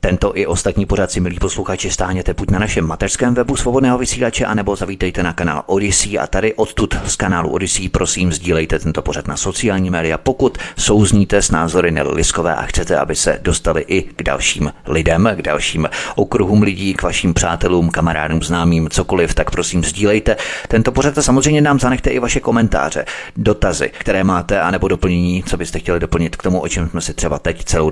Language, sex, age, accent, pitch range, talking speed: Czech, male, 30-49, native, 85-115 Hz, 185 wpm